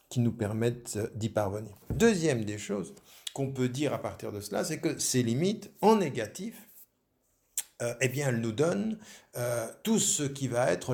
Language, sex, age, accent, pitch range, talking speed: French, male, 50-69, French, 110-145 Hz, 180 wpm